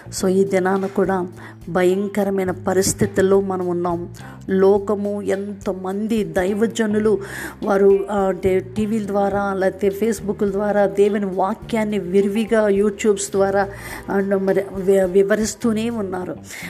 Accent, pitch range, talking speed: native, 195-215 Hz, 95 wpm